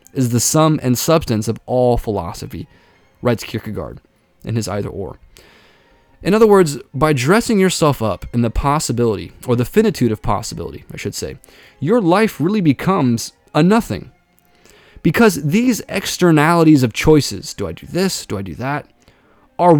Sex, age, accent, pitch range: male, 20-39, American, 115-170 Hz